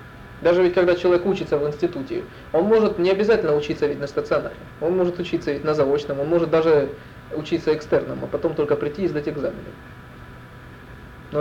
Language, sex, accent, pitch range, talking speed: Russian, male, native, 145-175 Hz, 180 wpm